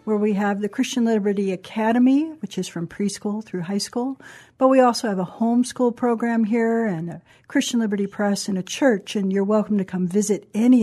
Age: 60-79